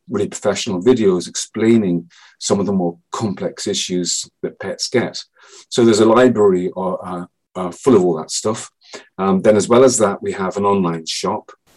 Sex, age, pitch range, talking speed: male, 40-59, 90-125 Hz, 180 wpm